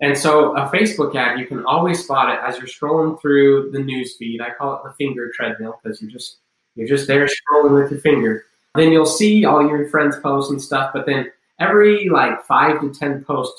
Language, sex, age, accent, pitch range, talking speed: English, male, 20-39, American, 120-150 Hz, 210 wpm